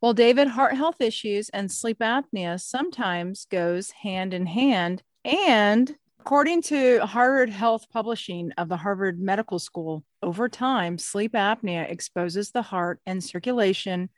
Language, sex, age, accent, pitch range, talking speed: English, female, 40-59, American, 190-245 Hz, 140 wpm